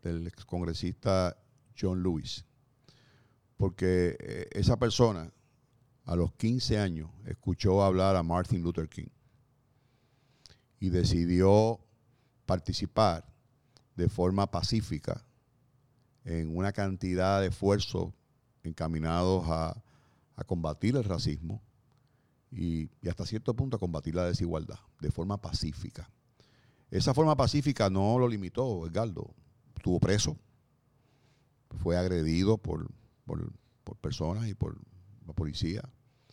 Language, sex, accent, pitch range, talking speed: Spanish, male, Venezuelan, 90-125 Hz, 105 wpm